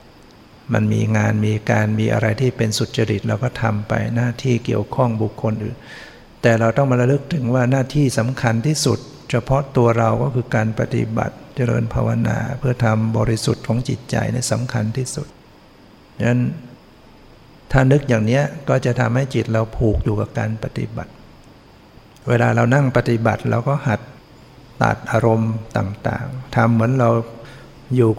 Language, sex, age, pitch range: Thai, male, 60-79, 110-125 Hz